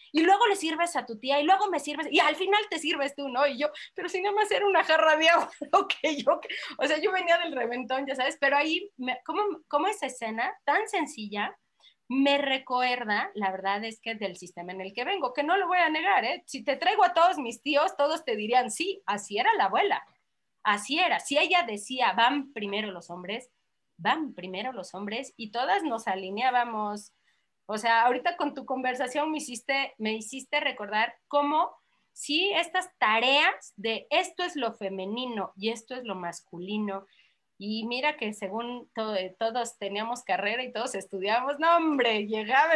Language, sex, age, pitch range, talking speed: Spanish, female, 30-49, 220-320 Hz, 195 wpm